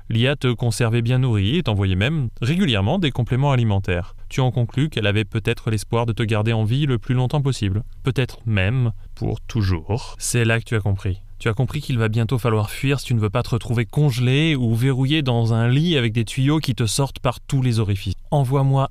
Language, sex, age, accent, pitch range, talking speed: French, male, 20-39, French, 105-135 Hz, 220 wpm